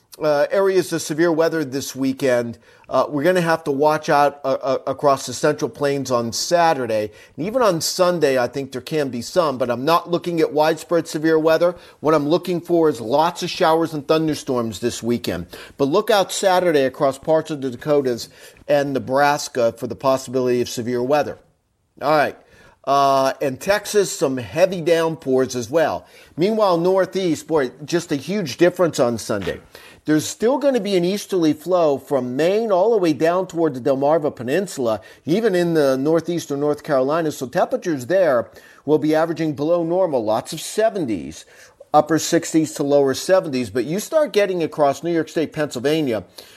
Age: 40-59